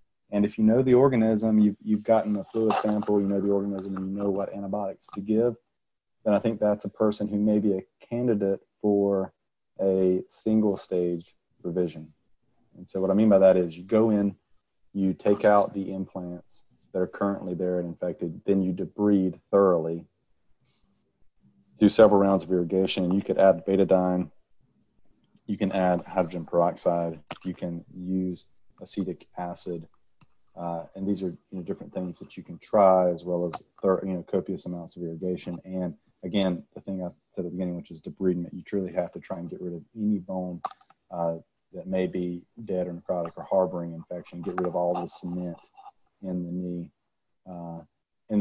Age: 30-49